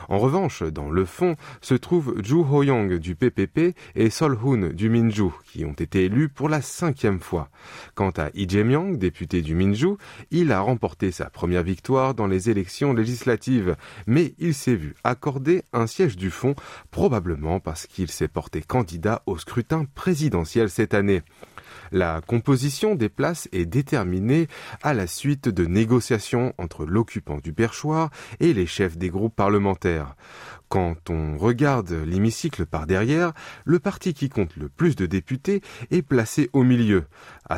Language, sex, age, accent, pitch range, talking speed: French, male, 20-39, French, 90-140 Hz, 160 wpm